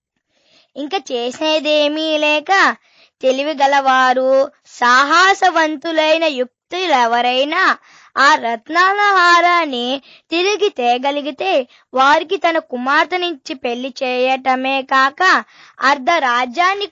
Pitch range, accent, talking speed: 265-345 Hz, native, 75 wpm